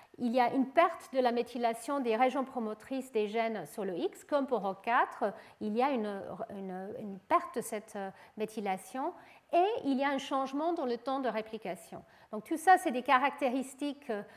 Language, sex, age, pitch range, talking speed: French, female, 40-59, 220-285 Hz, 190 wpm